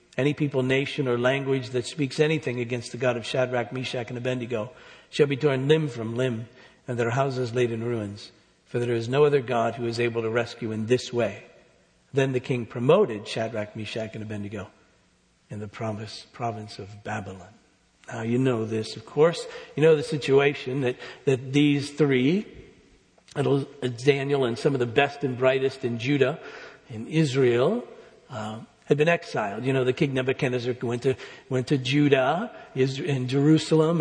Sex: male